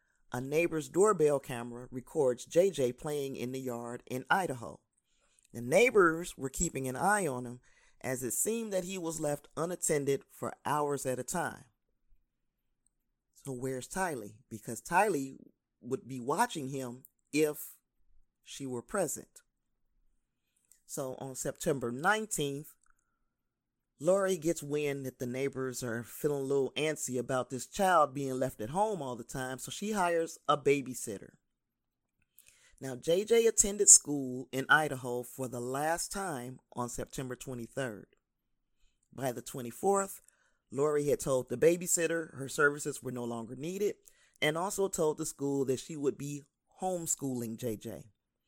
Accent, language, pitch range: American, English, 130-165 Hz